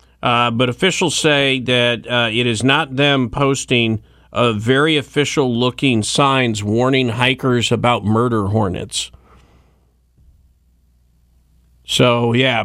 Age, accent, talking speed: 40-59, American, 105 wpm